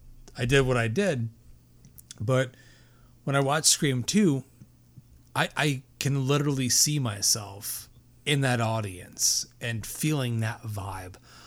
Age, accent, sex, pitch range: 30-49, American, male, 115-130 Hz